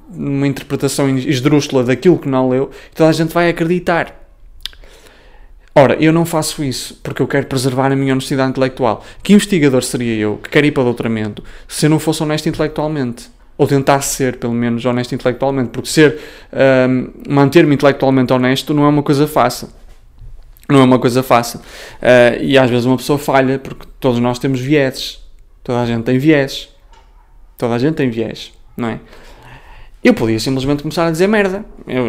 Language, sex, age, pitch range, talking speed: Portuguese, male, 20-39, 130-170 Hz, 180 wpm